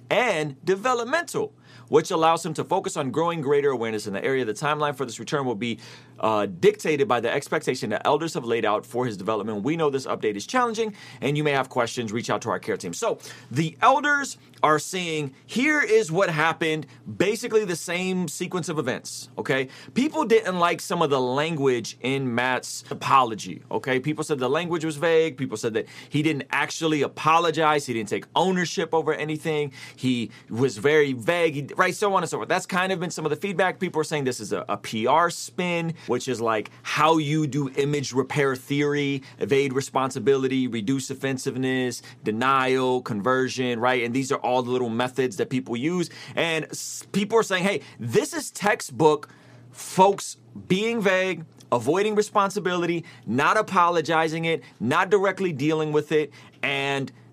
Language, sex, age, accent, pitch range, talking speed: English, male, 30-49, American, 130-175 Hz, 180 wpm